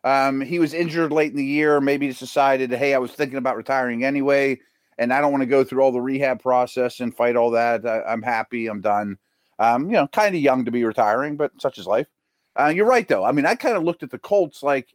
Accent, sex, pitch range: American, male, 120-160 Hz